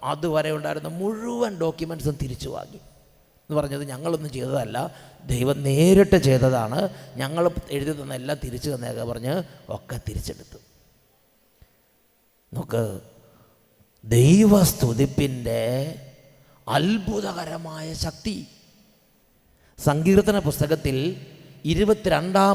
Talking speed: 65 wpm